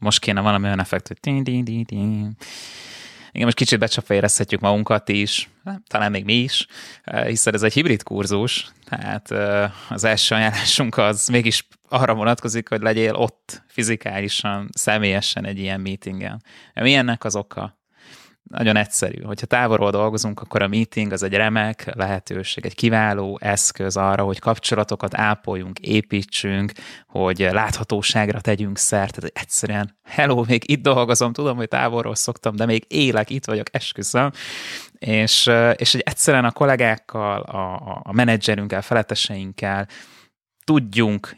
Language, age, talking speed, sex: Hungarian, 20-39, 130 wpm, male